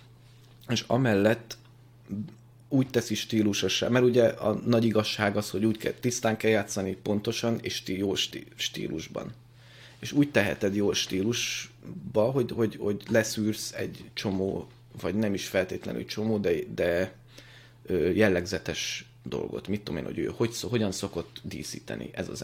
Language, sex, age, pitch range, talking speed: Hungarian, male, 30-49, 100-120 Hz, 145 wpm